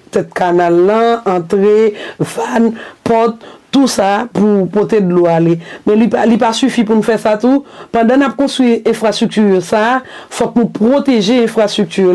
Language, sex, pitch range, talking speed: French, female, 195-240 Hz, 165 wpm